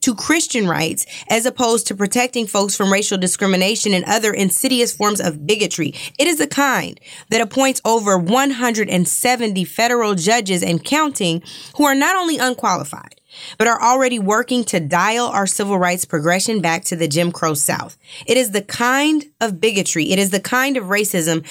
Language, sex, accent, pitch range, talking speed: English, female, American, 175-230 Hz, 175 wpm